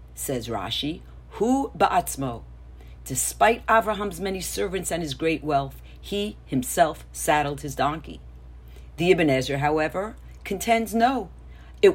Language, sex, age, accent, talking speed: English, female, 50-69, American, 110 wpm